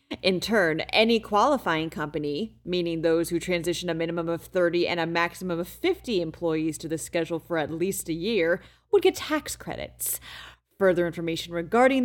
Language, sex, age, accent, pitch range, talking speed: English, female, 30-49, American, 170-245 Hz, 170 wpm